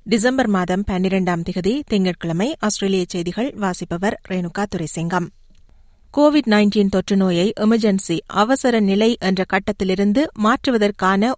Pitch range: 195-230 Hz